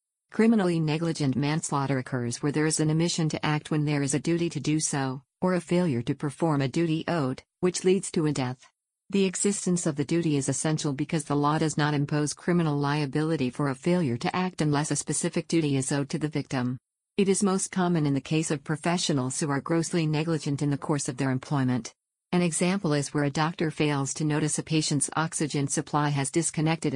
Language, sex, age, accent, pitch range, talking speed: English, female, 50-69, American, 140-170 Hz, 210 wpm